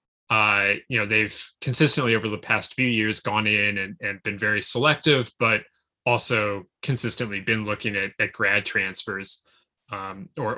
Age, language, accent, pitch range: 20-39, English, American, 105-125 Hz